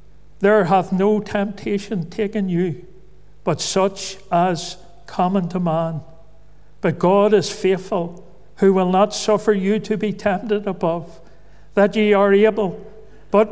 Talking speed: 135 wpm